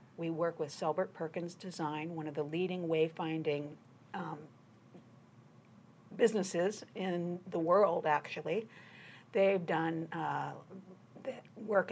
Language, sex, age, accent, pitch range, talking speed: English, female, 50-69, American, 155-200 Hz, 105 wpm